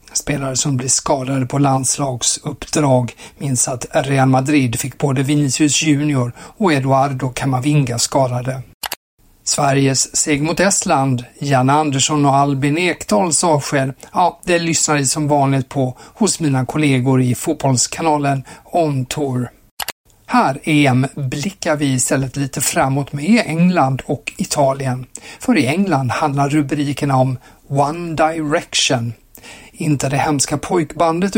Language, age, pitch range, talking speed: Swedish, 50-69, 135-160 Hz, 125 wpm